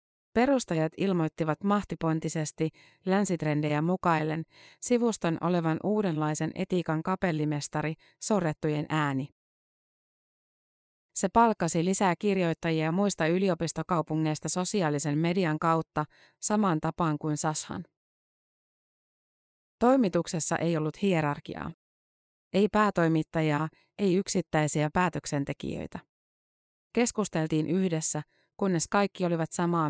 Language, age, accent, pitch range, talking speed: Finnish, 30-49, native, 155-190 Hz, 80 wpm